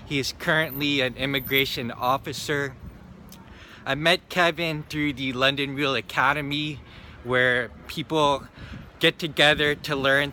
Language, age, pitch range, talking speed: English, 20-39, 120-145 Hz, 115 wpm